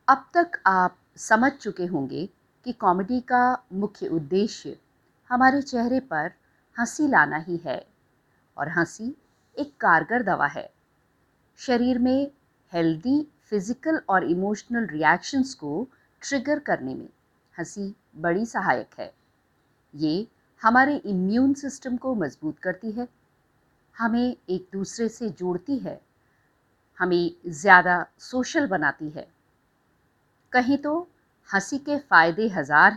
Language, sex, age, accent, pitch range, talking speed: Hindi, female, 50-69, native, 170-260 Hz, 115 wpm